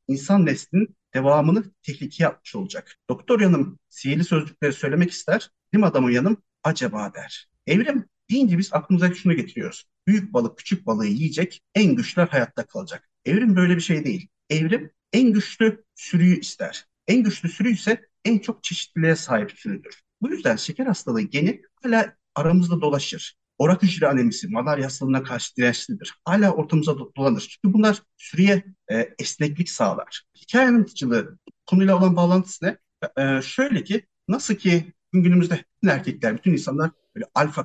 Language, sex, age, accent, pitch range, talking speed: Turkish, male, 50-69, native, 135-205 Hz, 145 wpm